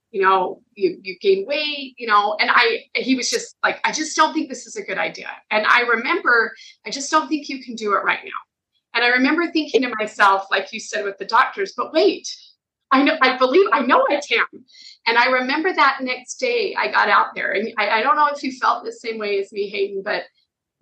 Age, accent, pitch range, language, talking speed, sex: 30-49, American, 215-290 Hz, English, 240 wpm, female